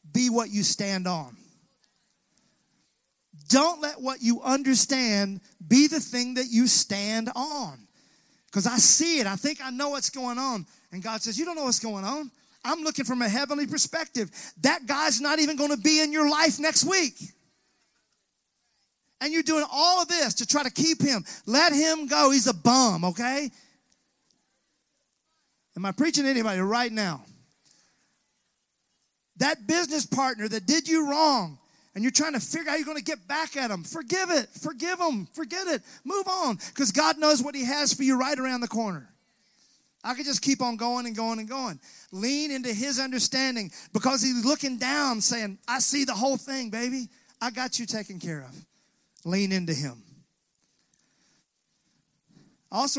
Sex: male